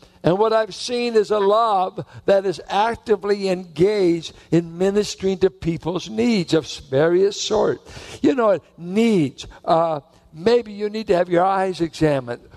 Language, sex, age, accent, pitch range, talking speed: English, male, 60-79, American, 150-195 Hz, 150 wpm